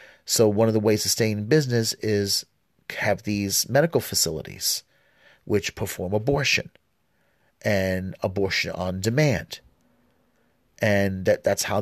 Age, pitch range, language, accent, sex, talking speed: 40-59, 95-120 Hz, English, American, male, 120 wpm